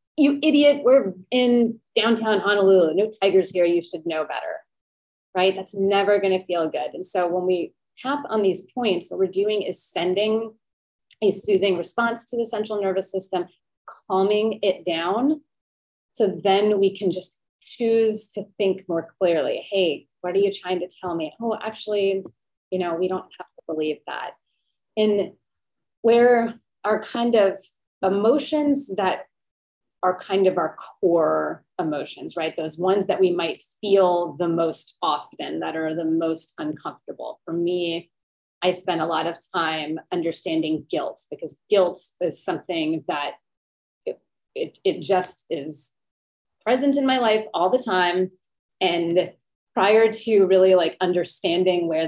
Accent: American